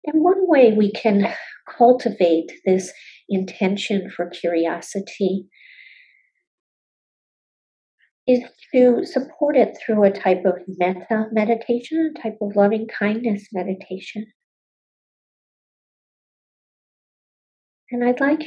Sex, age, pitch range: female, 50-69, 185-250 Hz